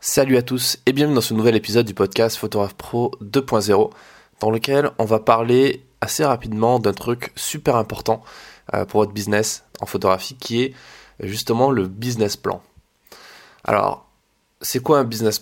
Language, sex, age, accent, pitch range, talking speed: French, male, 20-39, French, 110-125 Hz, 160 wpm